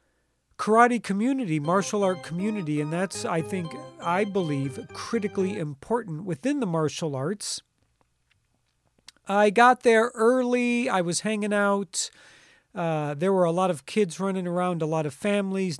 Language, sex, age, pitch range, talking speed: English, male, 40-59, 175-210 Hz, 145 wpm